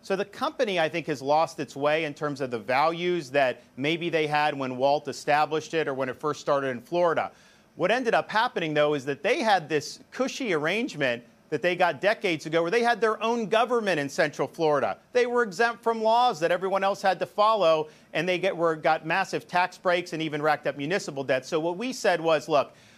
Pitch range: 150-185 Hz